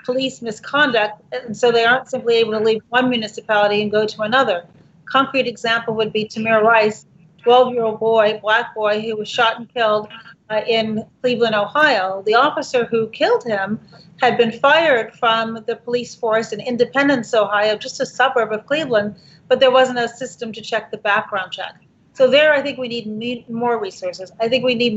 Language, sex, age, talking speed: English, female, 40-59, 190 wpm